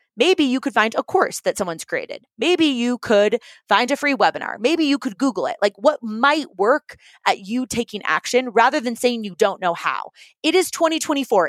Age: 20-39